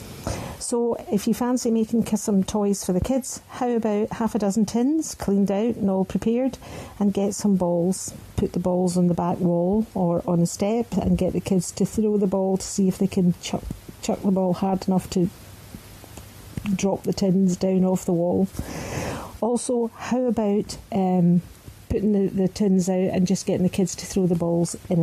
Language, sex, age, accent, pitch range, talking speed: English, female, 50-69, British, 180-215 Hz, 195 wpm